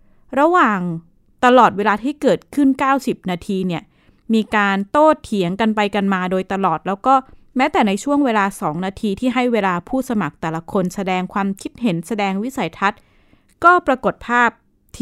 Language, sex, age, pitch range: Thai, female, 20-39, 190-240 Hz